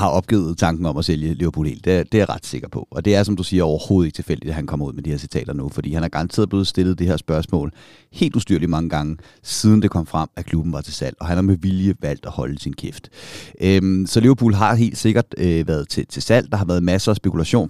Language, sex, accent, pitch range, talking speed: Danish, male, native, 85-110 Hz, 280 wpm